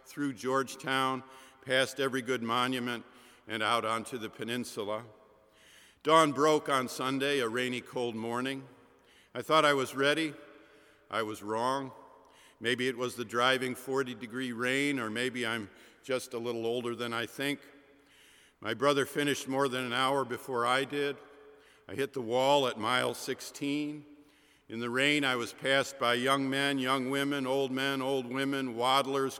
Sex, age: male, 50-69